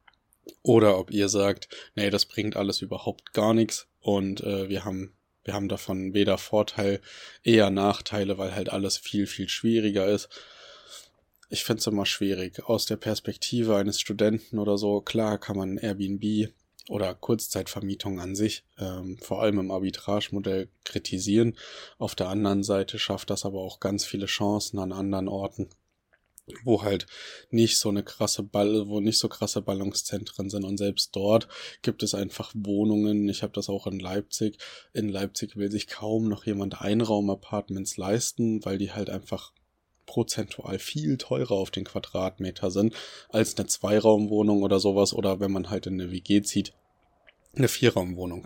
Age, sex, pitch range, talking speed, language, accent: 20-39, male, 95-110 Hz, 160 wpm, German, German